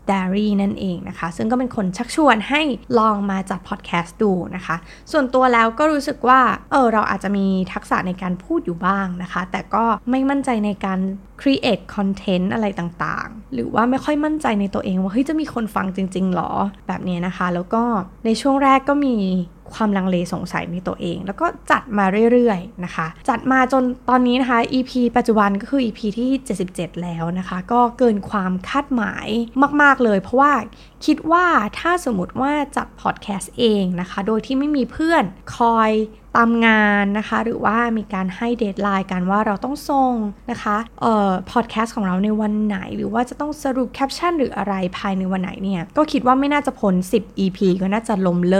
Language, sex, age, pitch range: Thai, female, 20-39, 190-245 Hz